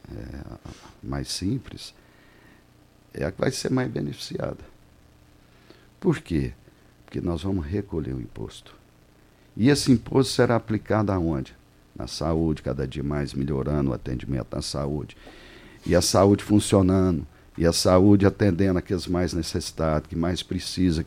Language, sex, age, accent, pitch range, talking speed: Portuguese, male, 60-79, Brazilian, 70-105 Hz, 135 wpm